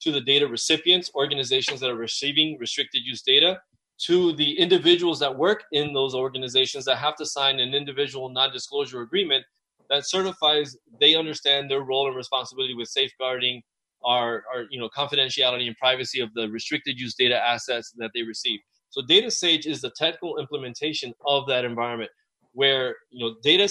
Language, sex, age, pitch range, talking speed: English, male, 20-39, 130-165 Hz, 165 wpm